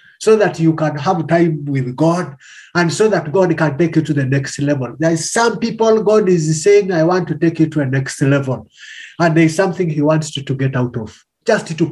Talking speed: 245 wpm